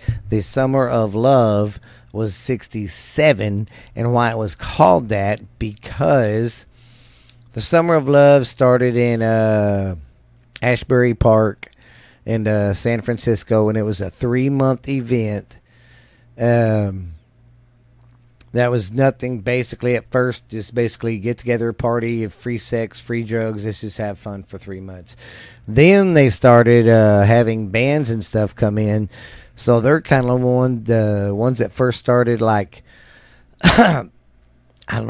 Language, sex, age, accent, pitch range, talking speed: English, male, 40-59, American, 105-125 Hz, 135 wpm